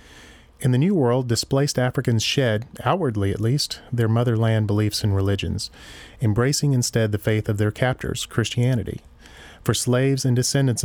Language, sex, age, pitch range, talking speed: English, male, 30-49, 105-130 Hz, 150 wpm